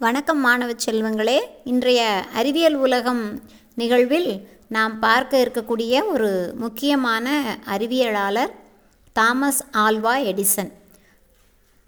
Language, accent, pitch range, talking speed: Tamil, native, 215-270 Hz, 80 wpm